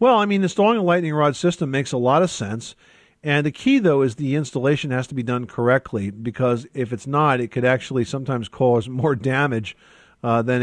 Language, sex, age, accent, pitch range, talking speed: English, male, 50-69, American, 120-150 Hz, 215 wpm